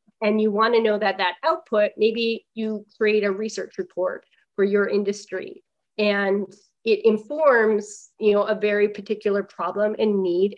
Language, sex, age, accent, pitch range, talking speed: English, female, 30-49, American, 195-220 Hz, 160 wpm